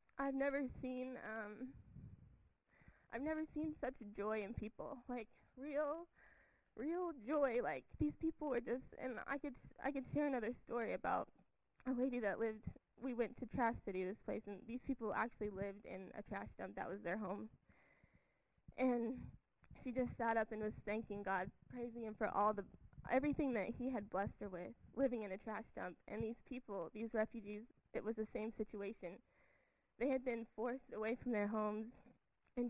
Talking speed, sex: 180 wpm, female